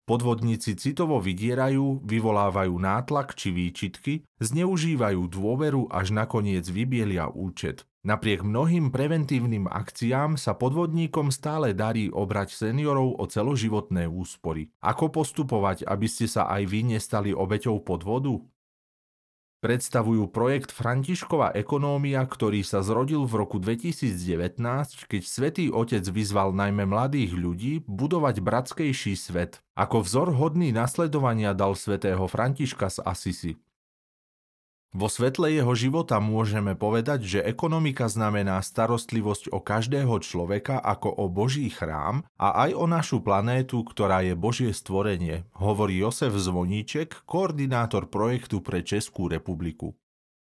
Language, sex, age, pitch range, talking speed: Slovak, male, 40-59, 100-135 Hz, 120 wpm